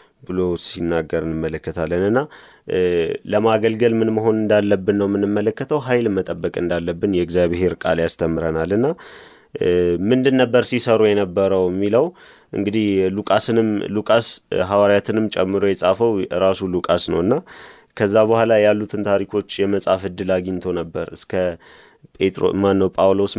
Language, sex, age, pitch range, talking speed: Amharic, male, 30-49, 90-105 Hz, 100 wpm